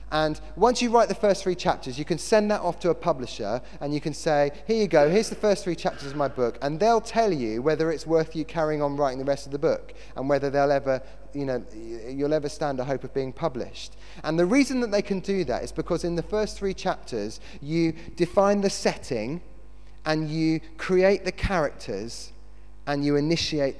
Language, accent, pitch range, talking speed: English, British, 110-160 Hz, 220 wpm